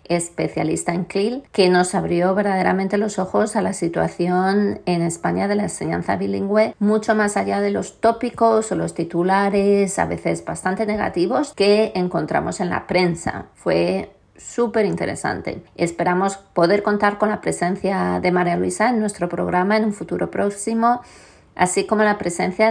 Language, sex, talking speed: Spanish, female, 155 wpm